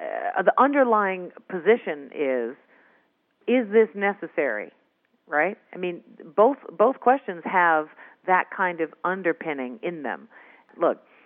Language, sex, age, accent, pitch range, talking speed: English, female, 50-69, American, 145-205 Hz, 115 wpm